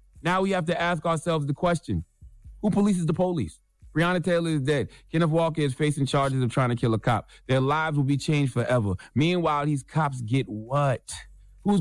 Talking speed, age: 200 wpm, 30-49